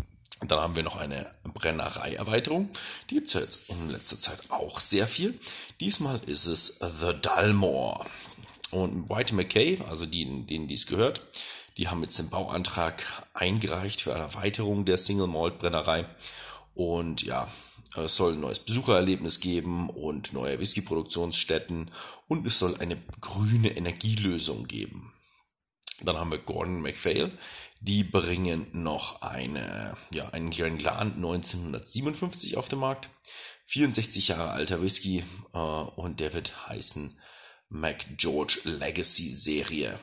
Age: 40-59